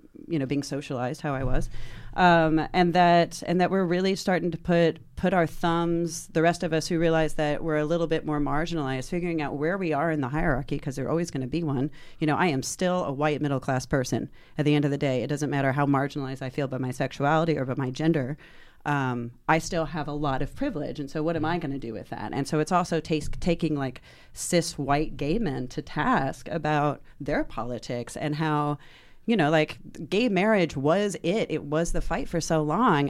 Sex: female